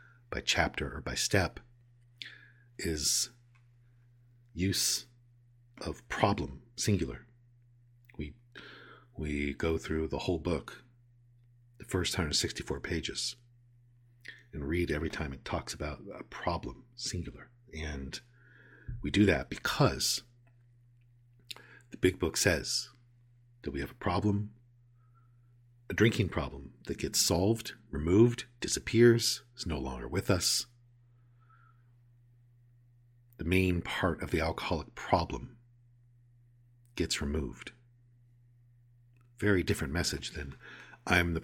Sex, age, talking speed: male, 50-69, 105 wpm